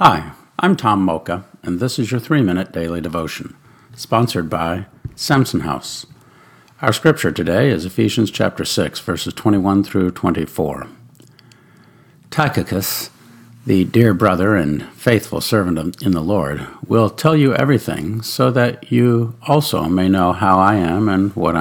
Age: 50-69